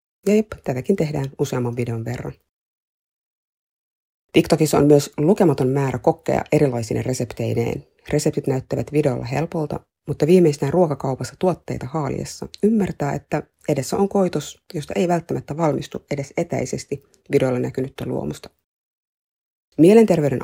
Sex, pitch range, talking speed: female, 135-170 Hz, 115 wpm